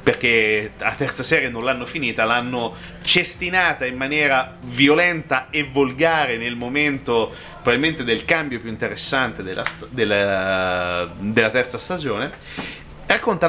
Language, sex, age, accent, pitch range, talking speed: Italian, male, 30-49, native, 110-165 Hz, 125 wpm